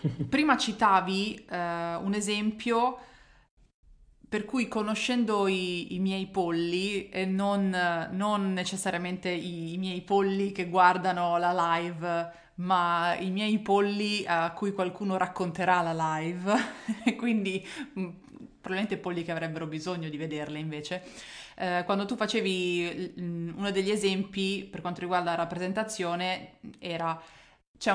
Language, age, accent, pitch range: Italian, 20-39, native, 170-205 Hz